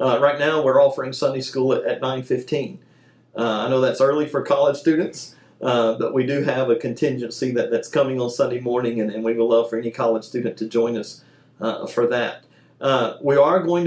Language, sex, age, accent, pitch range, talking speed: English, male, 40-59, American, 115-140 Hz, 210 wpm